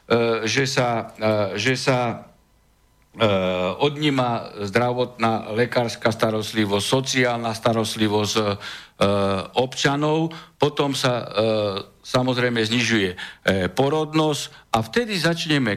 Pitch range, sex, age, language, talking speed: 95-125 Hz, male, 60-79, Slovak, 70 wpm